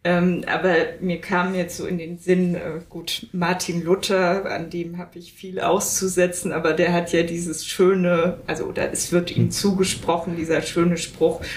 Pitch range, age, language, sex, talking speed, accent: 170-190 Hz, 20-39, German, female, 175 wpm, German